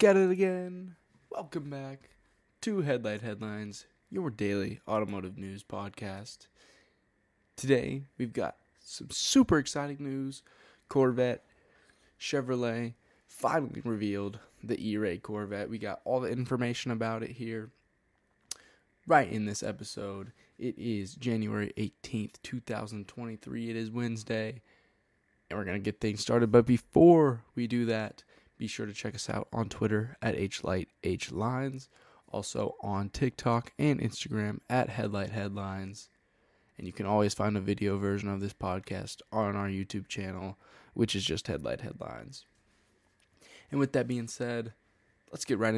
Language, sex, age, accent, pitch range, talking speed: English, male, 20-39, American, 100-120 Hz, 135 wpm